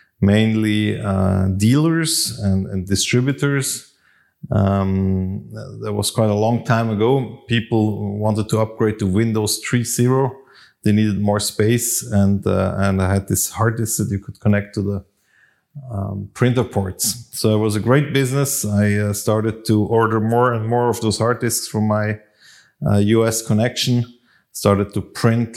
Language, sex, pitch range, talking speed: English, male, 100-115 Hz, 160 wpm